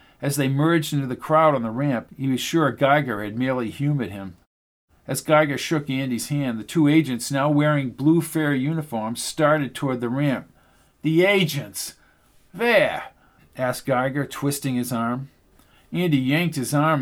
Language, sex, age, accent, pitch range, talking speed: English, male, 50-69, American, 130-160 Hz, 160 wpm